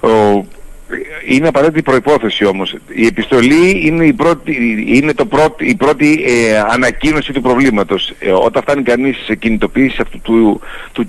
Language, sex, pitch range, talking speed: Greek, male, 105-160 Hz, 145 wpm